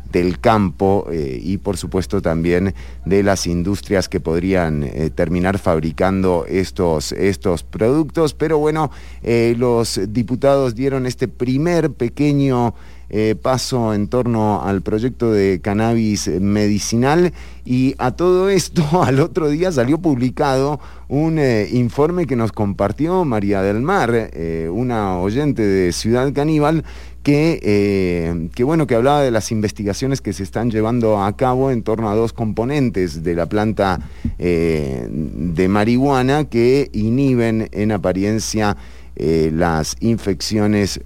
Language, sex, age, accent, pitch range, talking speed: English, male, 30-49, Argentinian, 90-125 Hz, 135 wpm